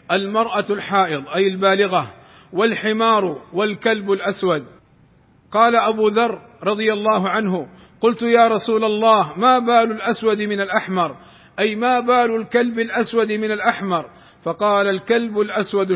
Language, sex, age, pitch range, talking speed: Arabic, male, 50-69, 195-225 Hz, 120 wpm